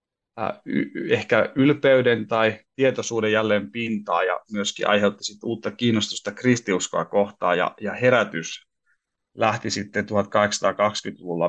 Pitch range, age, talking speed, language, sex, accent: 105-125 Hz, 30-49, 100 wpm, Finnish, male, native